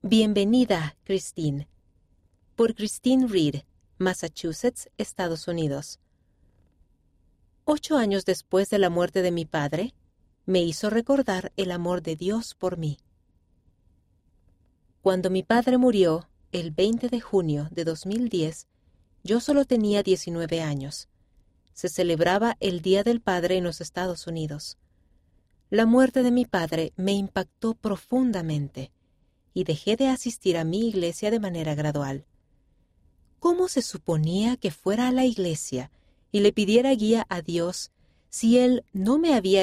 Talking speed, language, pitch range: 135 wpm, Spanish, 150-215 Hz